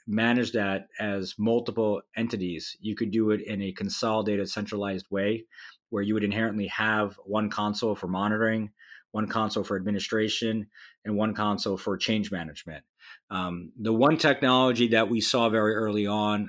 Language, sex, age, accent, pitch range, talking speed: English, male, 30-49, American, 100-115 Hz, 155 wpm